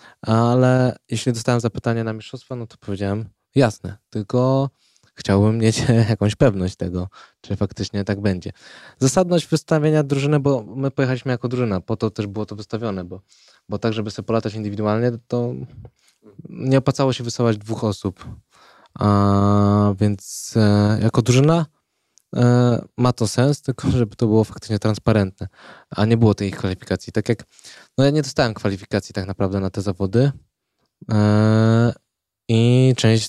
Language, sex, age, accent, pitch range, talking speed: Polish, male, 20-39, native, 105-125 Hz, 145 wpm